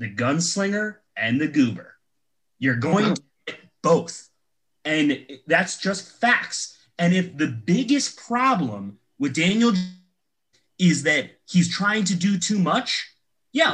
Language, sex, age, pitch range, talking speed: English, male, 30-49, 155-205 Hz, 130 wpm